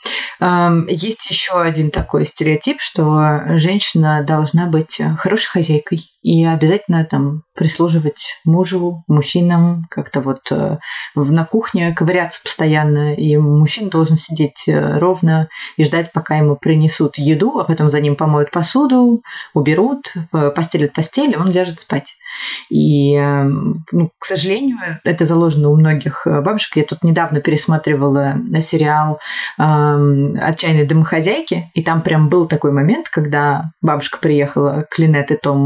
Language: Russian